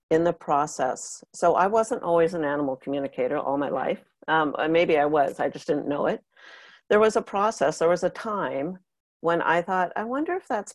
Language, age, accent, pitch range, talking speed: English, 50-69, American, 145-185 Hz, 205 wpm